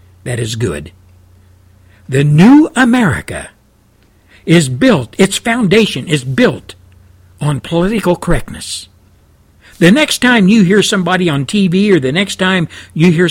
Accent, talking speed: American, 130 wpm